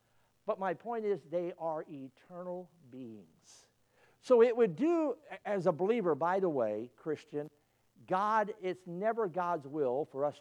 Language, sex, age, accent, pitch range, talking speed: English, male, 60-79, American, 145-205 Hz, 150 wpm